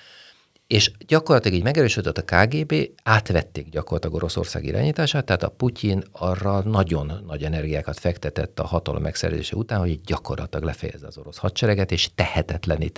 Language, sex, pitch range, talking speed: Hungarian, male, 80-100 Hz, 145 wpm